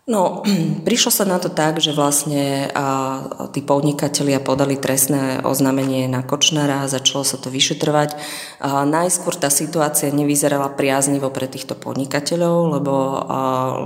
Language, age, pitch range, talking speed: Slovak, 30-49, 130-145 Hz, 130 wpm